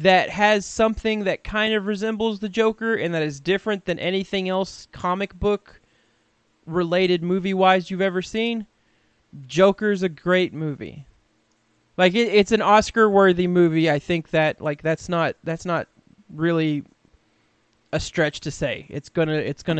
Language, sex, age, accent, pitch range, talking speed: English, male, 20-39, American, 145-195 Hz, 160 wpm